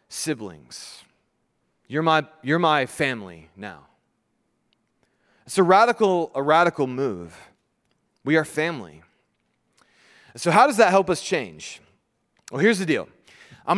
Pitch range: 140-190 Hz